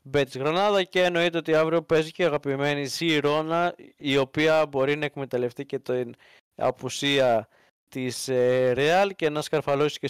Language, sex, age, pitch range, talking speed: Greek, male, 20-39, 130-160 Hz, 150 wpm